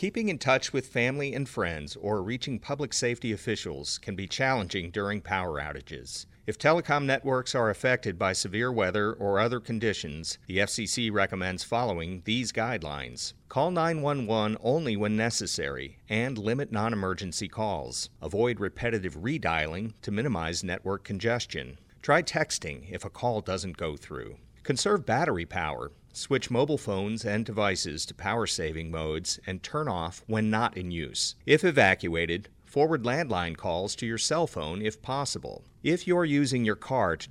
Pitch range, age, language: 95-120 Hz, 40-59, English